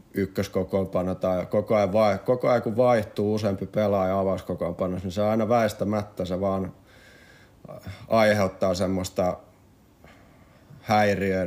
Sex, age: male, 30-49